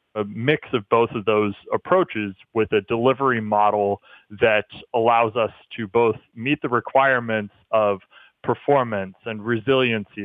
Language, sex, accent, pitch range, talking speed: English, male, American, 110-135 Hz, 135 wpm